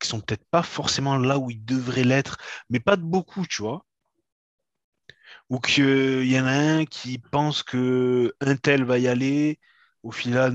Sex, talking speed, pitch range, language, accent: male, 190 wpm, 100-135 Hz, French, French